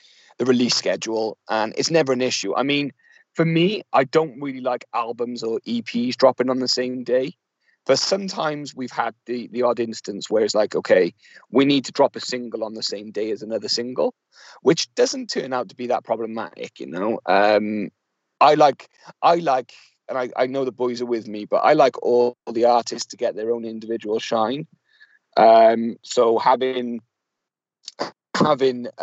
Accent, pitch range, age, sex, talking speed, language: British, 110-130 Hz, 30-49, male, 185 wpm, English